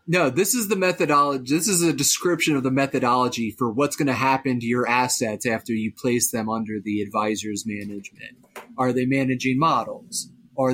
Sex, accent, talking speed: male, American, 185 wpm